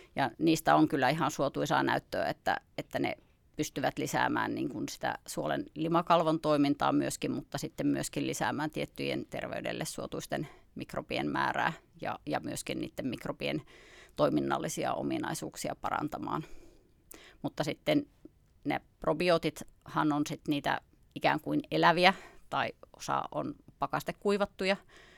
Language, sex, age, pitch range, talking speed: Finnish, female, 30-49, 150-165 Hz, 115 wpm